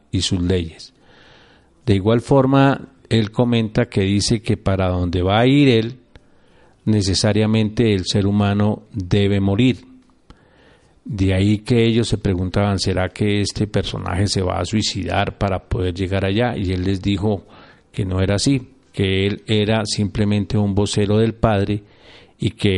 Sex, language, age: male, Spanish, 40-59